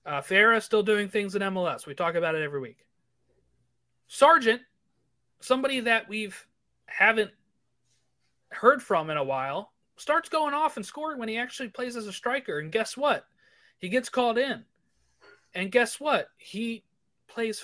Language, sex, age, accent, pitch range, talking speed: English, male, 30-49, American, 165-250 Hz, 165 wpm